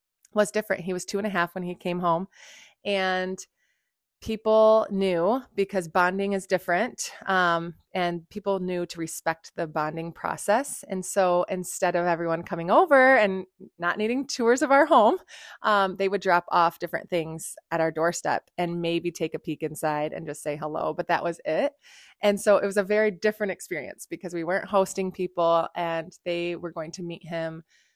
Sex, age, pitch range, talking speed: female, 20-39, 165-195 Hz, 185 wpm